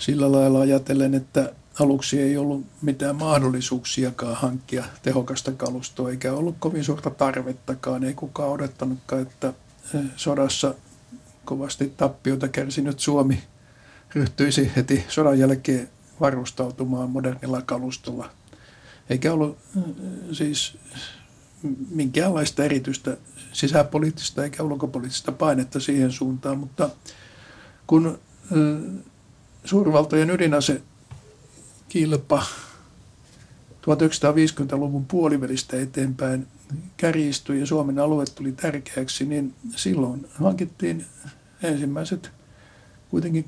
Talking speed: 85 wpm